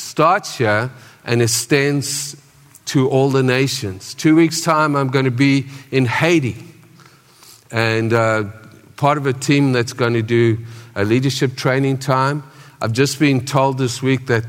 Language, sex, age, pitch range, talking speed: English, male, 50-69, 115-145 Hz, 155 wpm